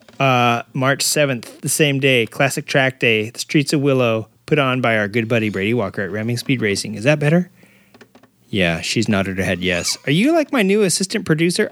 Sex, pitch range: male, 110-170 Hz